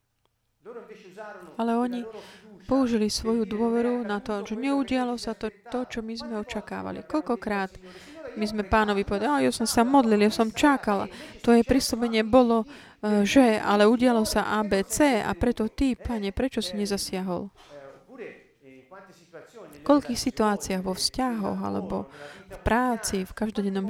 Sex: female